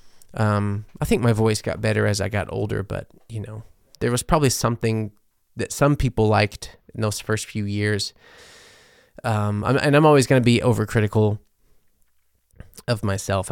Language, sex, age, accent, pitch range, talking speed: English, male, 20-39, American, 105-120 Hz, 170 wpm